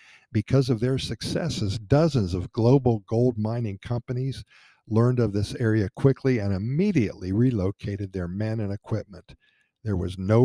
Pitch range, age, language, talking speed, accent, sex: 105-125 Hz, 50-69, English, 145 wpm, American, male